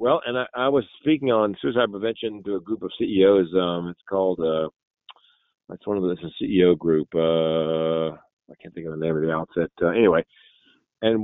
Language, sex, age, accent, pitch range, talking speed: English, male, 50-69, American, 95-130 Hz, 205 wpm